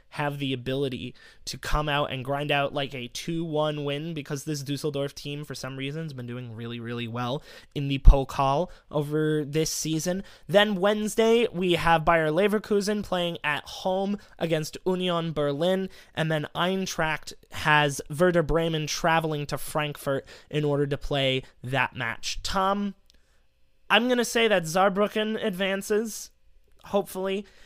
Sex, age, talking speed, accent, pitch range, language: male, 20-39, 150 wpm, American, 145-180 Hz, English